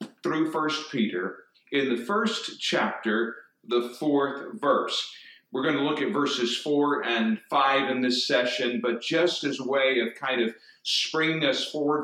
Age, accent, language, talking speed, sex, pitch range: 50-69, American, English, 160 wpm, male, 130-180 Hz